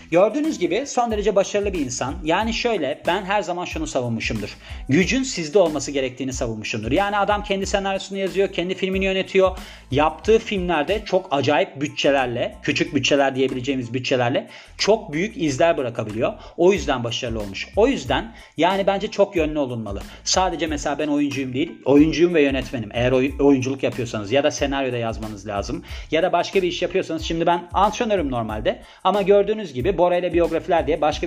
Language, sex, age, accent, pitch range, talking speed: Turkish, male, 40-59, native, 135-180 Hz, 165 wpm